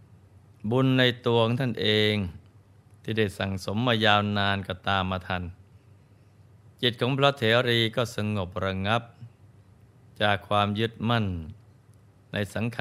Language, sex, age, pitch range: Thai, male, 20-39, 100-115 Hz